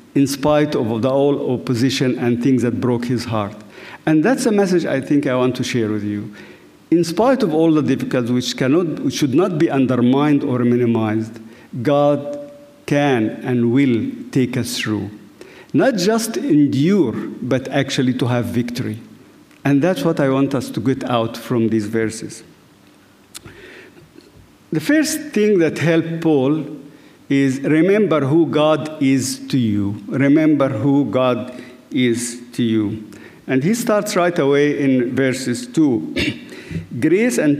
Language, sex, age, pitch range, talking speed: English, male, 50-69, 125-165 Hz, 155 wpm